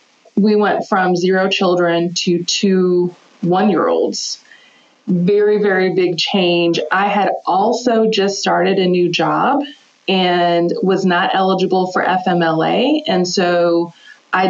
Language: English